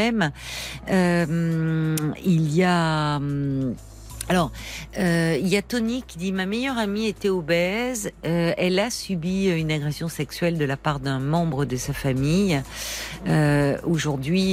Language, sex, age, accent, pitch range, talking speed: French, female, 50-69, French, 150-210 Hz, 140 wpm